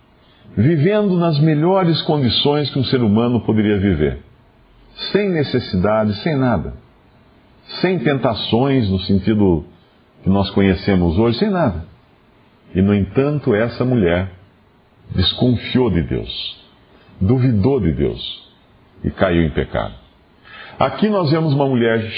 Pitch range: 100-150 Hz